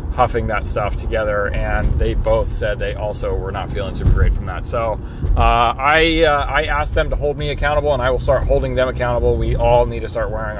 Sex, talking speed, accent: male, 230 wpm, American